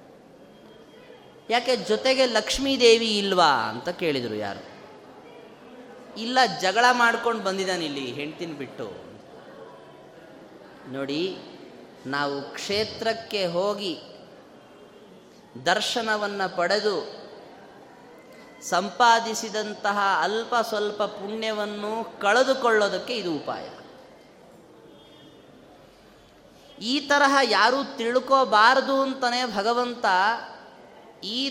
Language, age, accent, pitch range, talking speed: Kannada, 20-39, native, 185-240 Hz, 65 wpm